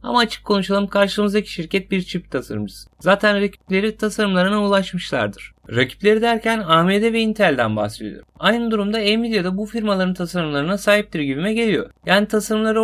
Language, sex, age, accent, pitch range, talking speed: Turkish, male, 30-49, native, 175-220 Hz, 135 wpm